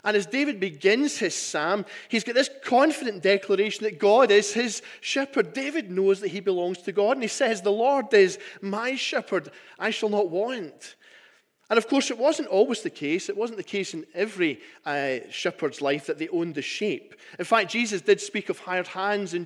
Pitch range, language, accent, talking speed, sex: 170-225 Hz, English, British, 205 wpm, male